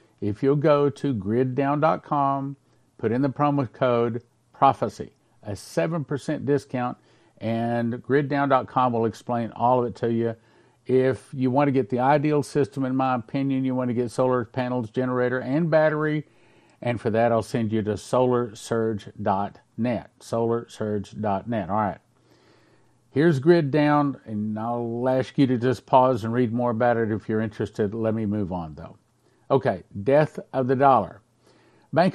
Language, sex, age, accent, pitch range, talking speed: English, male, 50-69, American, 115-140 Hz, 155 wpm